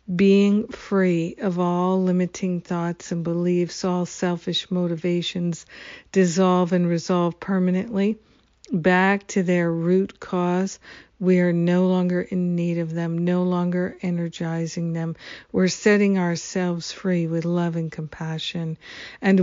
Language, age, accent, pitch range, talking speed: English, 50-69, American, 170-190 Hz, 125 wpm